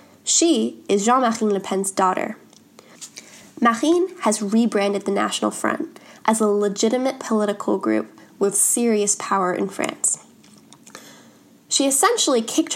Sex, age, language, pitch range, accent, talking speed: female, 10-29, English, 200-260 Hz, American, 120 wpm